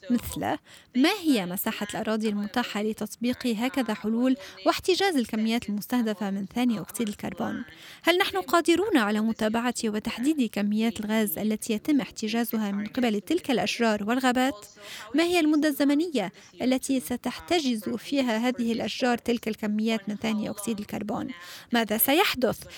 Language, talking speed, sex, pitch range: Arabic, 130 wpm, female, 225-280 Hz